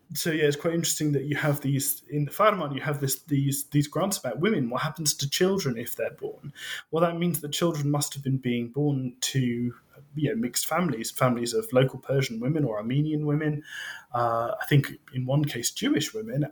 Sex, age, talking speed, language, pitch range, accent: male, 20-39, 210 wpm, English, 120-150 Hz, British